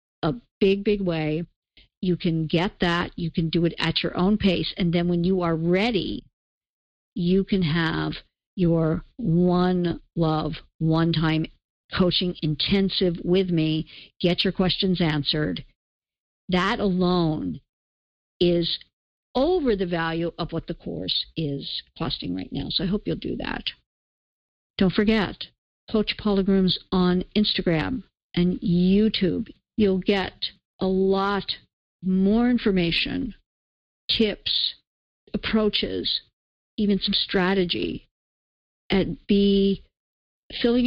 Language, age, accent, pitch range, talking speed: English, 50-69, American, 170-205 Hz, 115 wpm